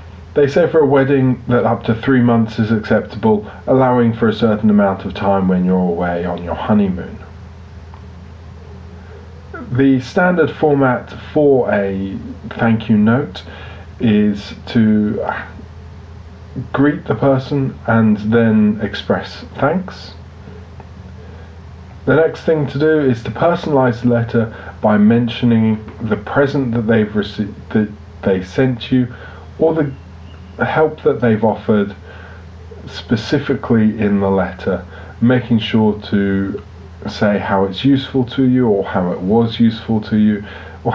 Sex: male